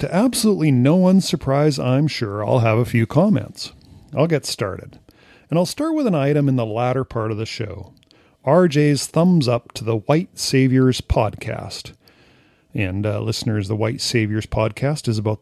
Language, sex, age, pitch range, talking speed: English, male, 40-59, 110-150 Hz, 175 wpm